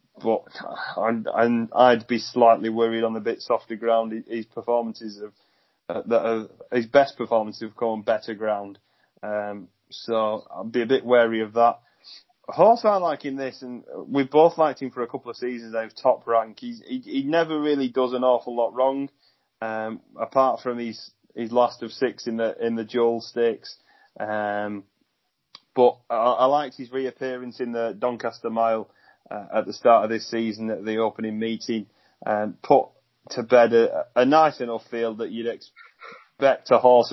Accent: British